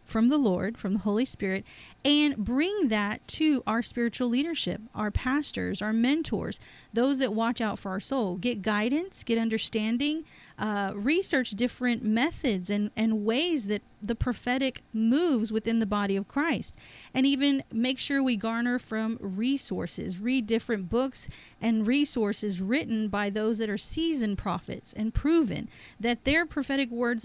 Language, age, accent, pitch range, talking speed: English, 30-49, American, 215-265 Hz, 155 wpm